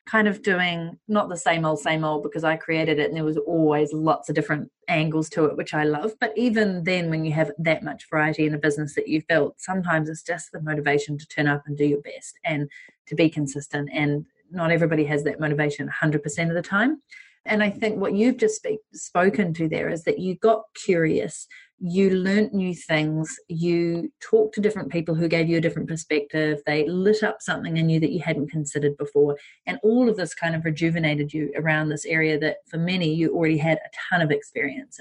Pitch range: 155-195 Hz